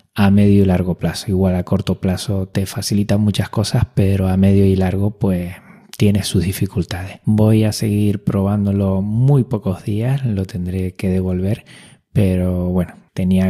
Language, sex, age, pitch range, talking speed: Spanish, male, 20-39, 95-110 Hz, 160 wpm